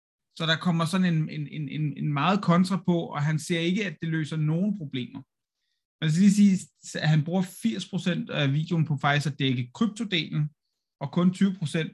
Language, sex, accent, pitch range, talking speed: Danish, male, native, 135-170 Hz, 185 wpm